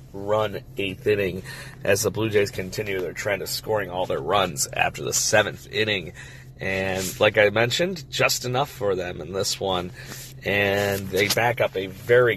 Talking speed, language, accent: 175 wpm, English, American